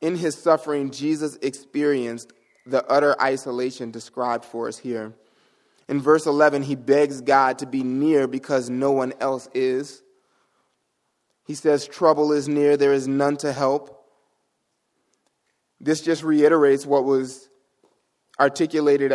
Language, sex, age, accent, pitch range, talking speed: English, male, 20-39, American, 125-145 Hz, 130 wpm